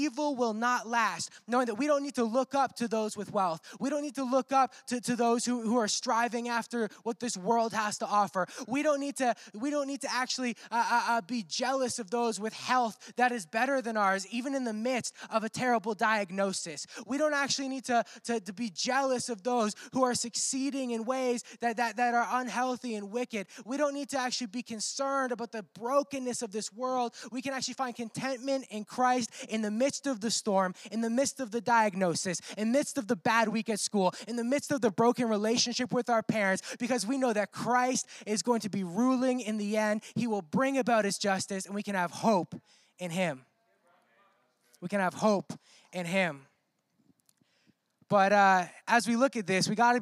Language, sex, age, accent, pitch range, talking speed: English, male, 20-39, American, 210-255 Hz, 220 wpm